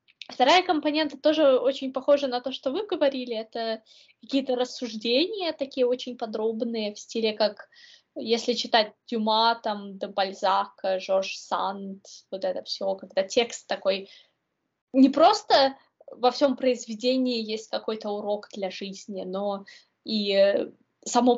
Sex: female